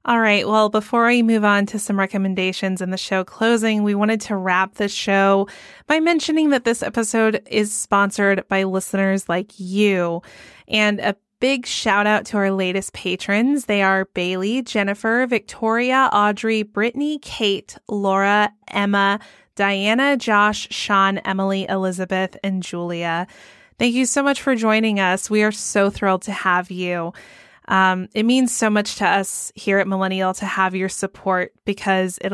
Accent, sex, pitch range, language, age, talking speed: American, female, 190-230 Hz, English, 20-39, 160 wpm